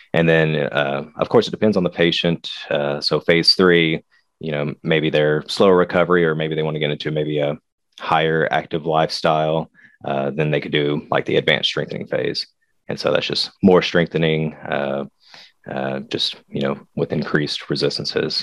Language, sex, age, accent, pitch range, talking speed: English, male, 30-49, American, 75-85 Hz, 180 wpm